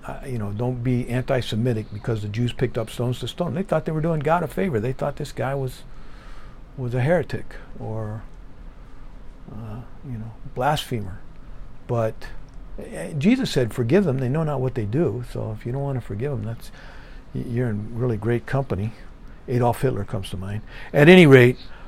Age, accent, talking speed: 50-69, American, 190 wpm